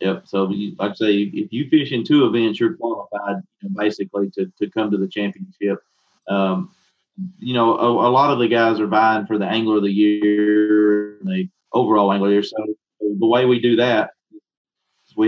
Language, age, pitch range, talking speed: English, 40-59, 100-120 Hz, 195 wpm